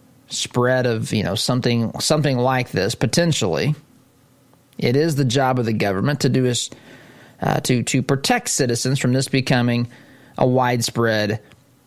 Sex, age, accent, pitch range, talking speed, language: male, 20-39, American, 120-140 Hz, 145 wpm, English